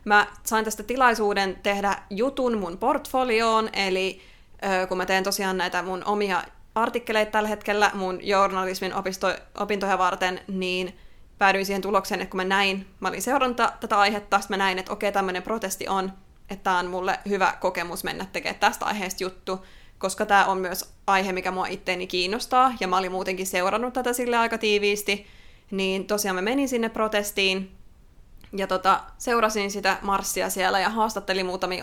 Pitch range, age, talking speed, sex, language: 185-215 Hz, 20-39, 170 wpm, female, Finnish